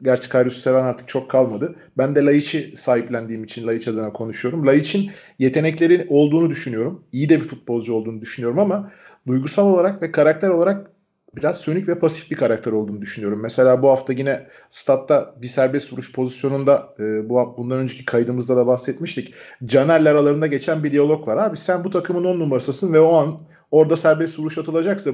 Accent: native